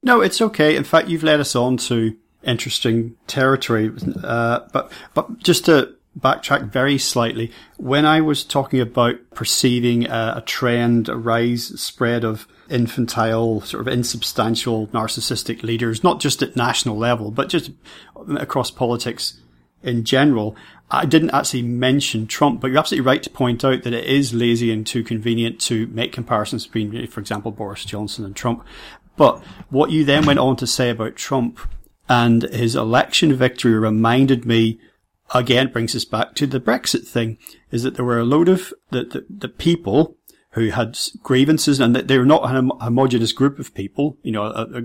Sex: male